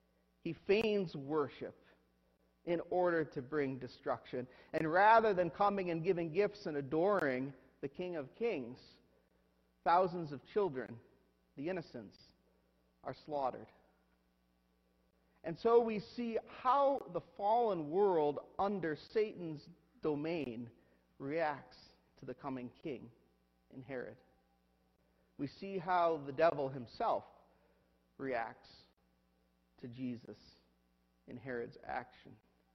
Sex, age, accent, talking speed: male, 40-59, American, 105 wpm